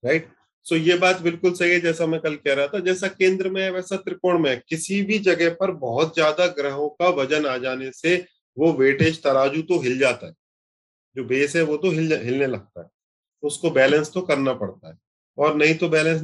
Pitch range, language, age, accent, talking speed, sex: 130-175 Hz, Hindi, 30-49, native, 230 wpm, male